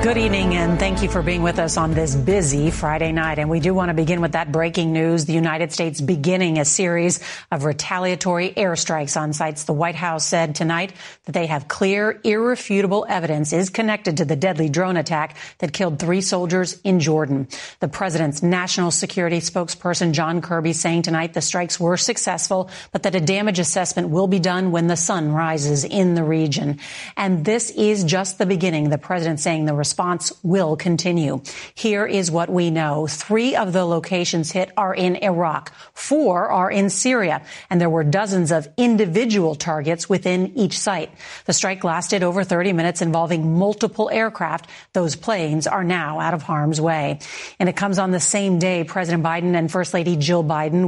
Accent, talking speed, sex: American, 190 wpm, female